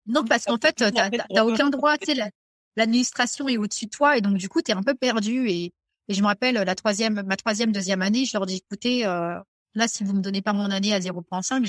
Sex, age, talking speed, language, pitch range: female, 30-49, 245 wpm, French, 185-225 Hz